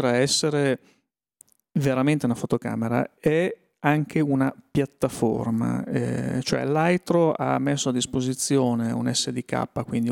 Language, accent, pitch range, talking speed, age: Italian, native, 120-145 Hz, 105 wpm, 40-59